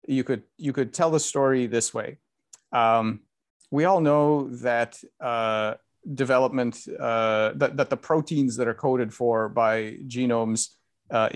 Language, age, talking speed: English, 40-59, 150 wpm